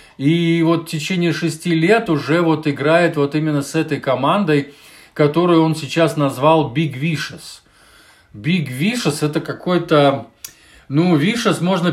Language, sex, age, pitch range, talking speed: Russian, male, 20-39, 140-170 Hz, 135 wpm